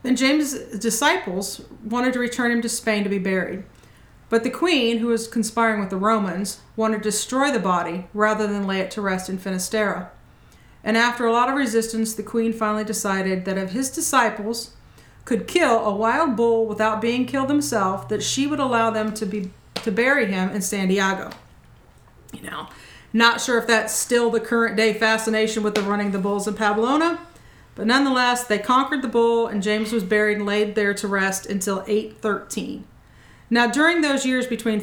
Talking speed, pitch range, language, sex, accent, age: 190 wpm, 200-235 Hz, English, female, American, 40-59